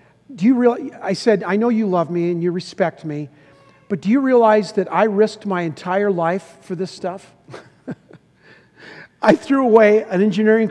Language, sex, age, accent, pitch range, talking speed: English, male, 50-69, American, 175-215 Hz, 180 wpm